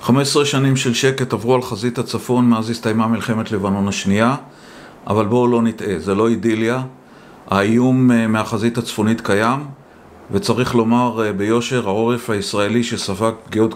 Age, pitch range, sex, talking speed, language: 40-59, 105-125 Hz, male, 135 wpm, Hebrew